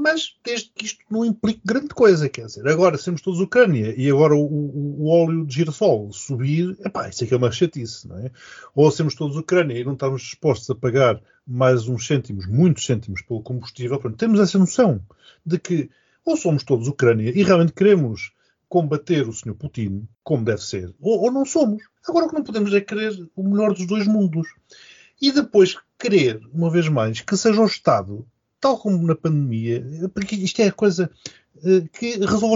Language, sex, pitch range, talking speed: Portuguese, male, 130-195 Hz, 195 wpm